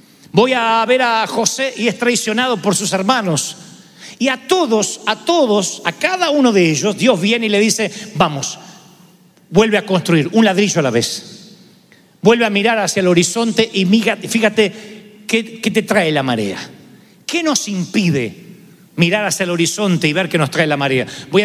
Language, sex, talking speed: Spanish, male, 180 wpm